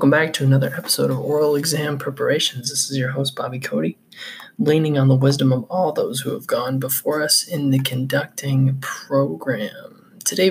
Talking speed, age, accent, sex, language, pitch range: 175 wpm, 20-39, American, male, English, 135-170 Hz